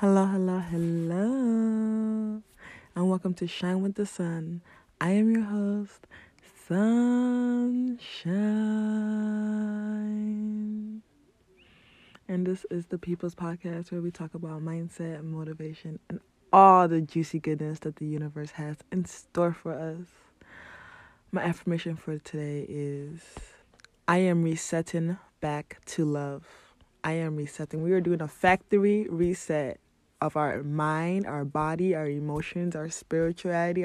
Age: 20-39